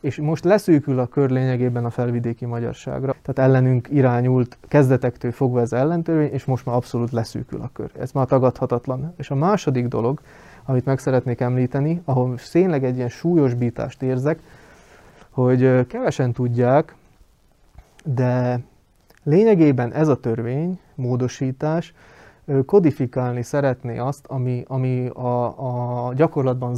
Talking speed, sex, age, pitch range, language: 135 wpm, male, 20-39, 120-145 Hz, Hungarian